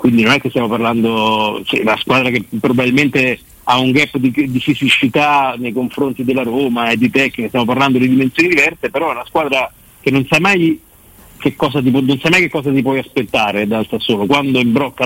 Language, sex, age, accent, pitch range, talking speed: Italian, male, 50-69, native, 115-135 Hz, 185 wpm